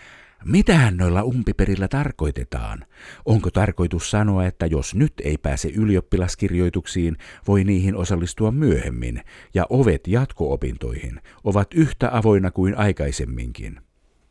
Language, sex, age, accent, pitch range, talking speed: Finnish, male, 50-69, native, 85-115 Hz, 105 wpm